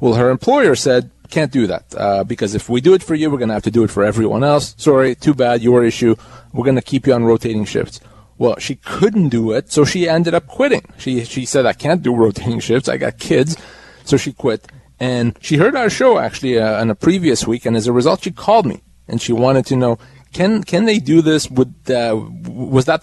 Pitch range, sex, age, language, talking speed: 115-150 Hz, male, 30-49, English, 245 wpm